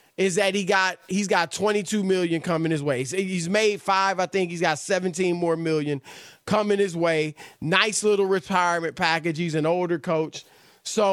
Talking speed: 180 wpm